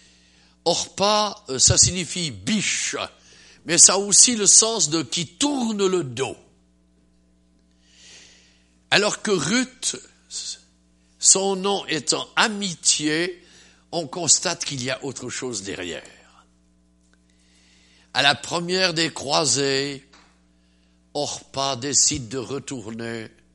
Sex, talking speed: male, 100 wpm